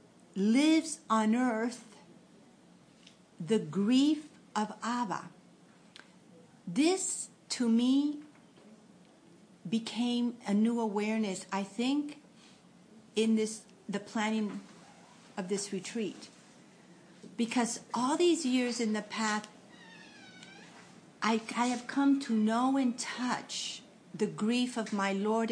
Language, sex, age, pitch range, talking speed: English, female, 50-69, 210-255 Hz, 100 wpm